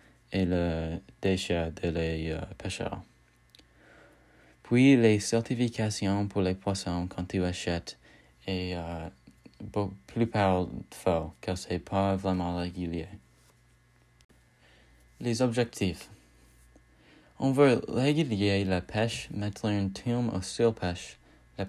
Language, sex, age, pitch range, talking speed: English, male, 20-39, 80-105 Hz, 110 wpm